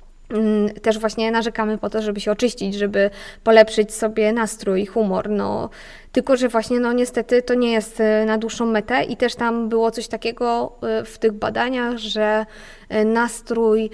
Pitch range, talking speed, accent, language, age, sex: 215-240 Hz, 155 wpm, native, Polish, 20-39, female